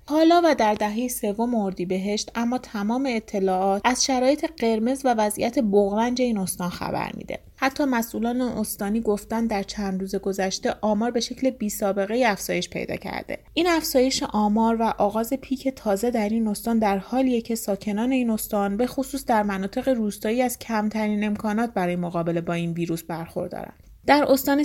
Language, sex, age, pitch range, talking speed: Persian, female, 30-49, 200-240 Hz, 170 wpm